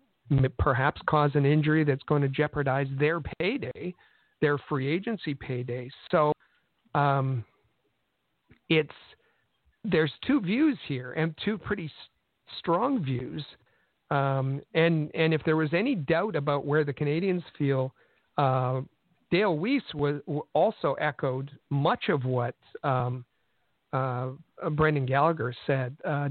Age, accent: 50-69, American